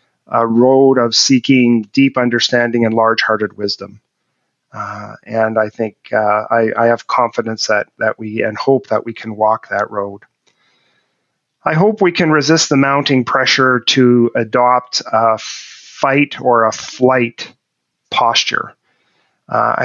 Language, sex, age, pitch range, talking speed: English, male, 40-59, 115-135 Hz, 140 wpm